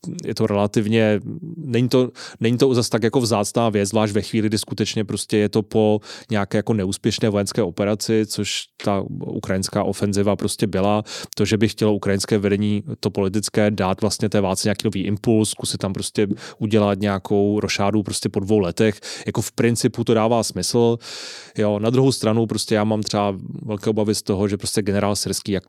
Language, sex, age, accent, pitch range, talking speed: Czech, male, 20-39, native, 100-115 Hz, 185 wpm